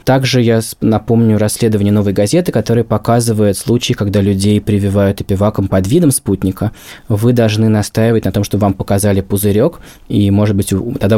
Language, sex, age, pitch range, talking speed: Russian, male, 20-39, 100-120 Hz, 145 wpm